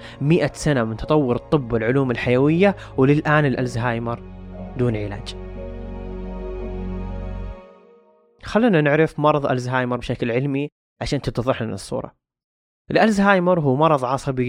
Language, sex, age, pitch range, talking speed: Arabic, male, 20-39, 115-150 Hz, 105 wpm